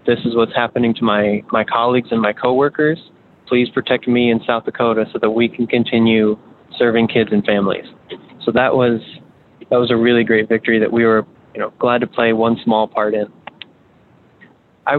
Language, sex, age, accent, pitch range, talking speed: English, male, 20-39, American, 115-140 Hz, 190 wpm